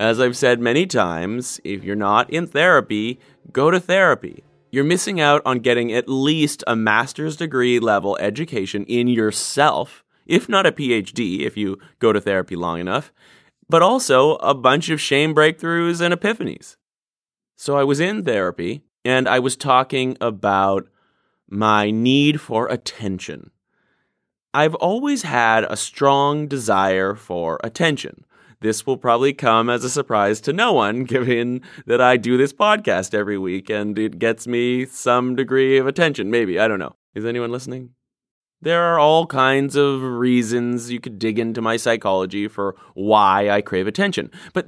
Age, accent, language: 30-49, American, English